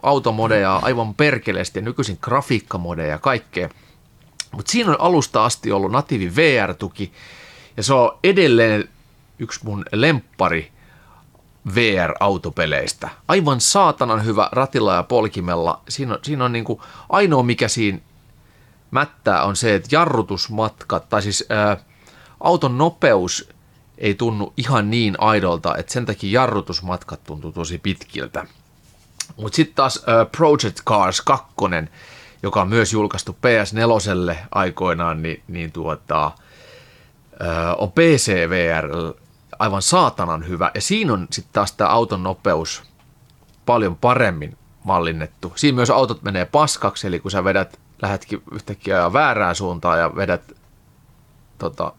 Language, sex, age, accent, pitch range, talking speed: Finnish, male, 30-49, native, 90-115 Hz, 125 wpm